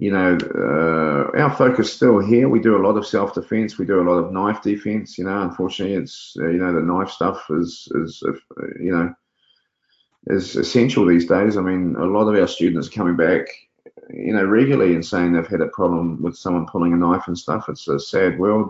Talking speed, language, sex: 220 wpm, English, male